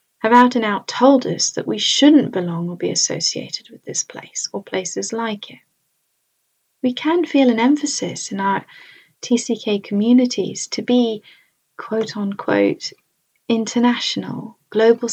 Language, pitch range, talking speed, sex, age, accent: English, 205-250 Hz, 125 wpm, female, 30-49, British